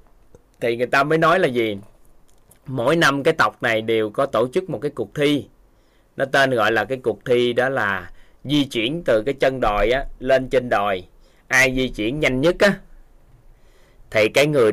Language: Vietnamese